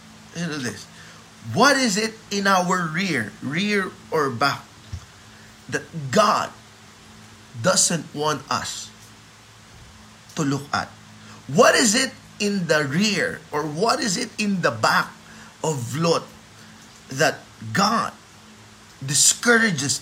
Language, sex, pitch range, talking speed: Filipino, male, 140-225 Hz, 115 wpm